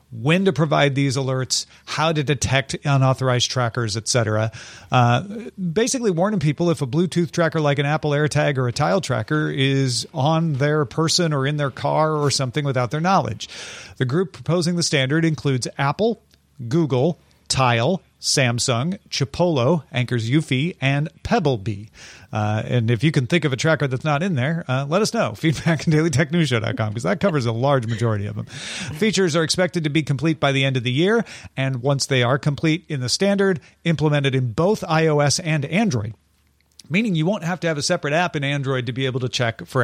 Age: 40-59